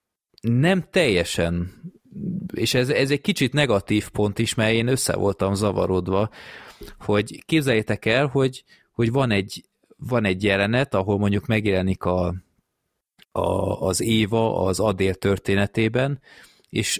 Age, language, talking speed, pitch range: 30-49, Hungarian, 115 wpm, 95-115 Hz